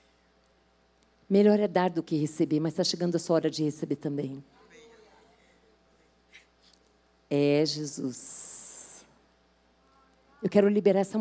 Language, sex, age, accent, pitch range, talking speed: Portuguese, female, 50-69, Brazilian, 145-200 Hz, 110 wpm